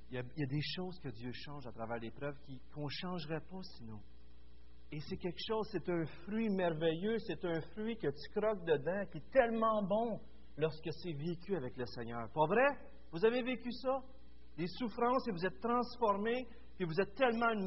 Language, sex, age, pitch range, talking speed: French, male, 40-59, 120-195 Hz, 210 wpm